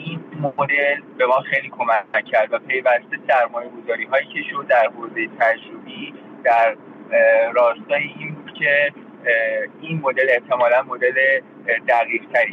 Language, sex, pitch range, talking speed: Persian, male, 125-165 Hz, 125 wpm